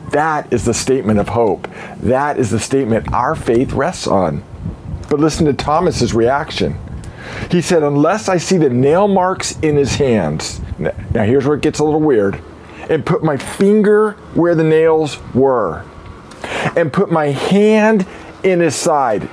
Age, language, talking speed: 40-59, English, 165 wpm